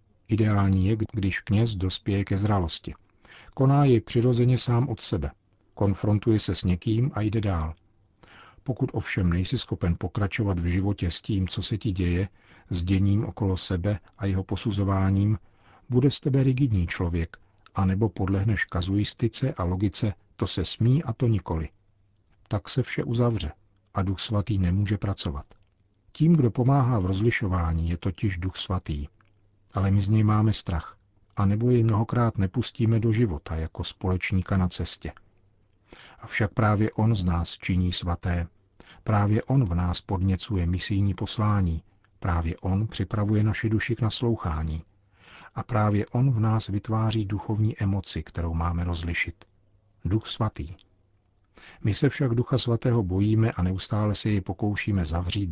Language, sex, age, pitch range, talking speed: Czech, male, 50-69, 95-110 Hz, 150 wpm